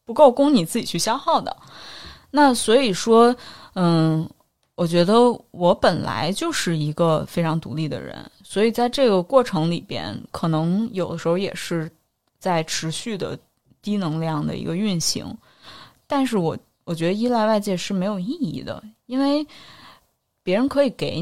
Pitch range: 165-225 Hz